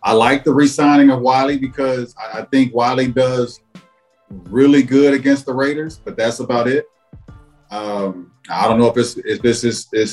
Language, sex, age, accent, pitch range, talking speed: English, male, 40-59, American, 115-135 Hz, 170 wpm